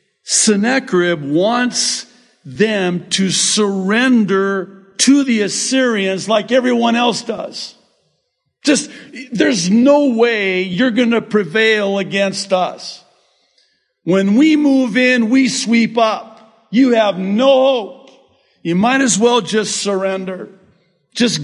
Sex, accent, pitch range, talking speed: male, American, 165-240 Hz, 110 wpm